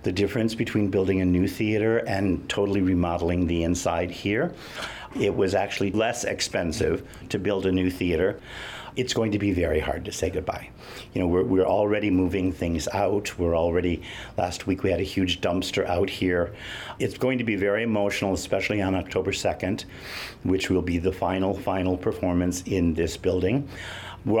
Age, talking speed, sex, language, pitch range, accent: 50-69, 175 wpm, male, English, 90-110 Hz, American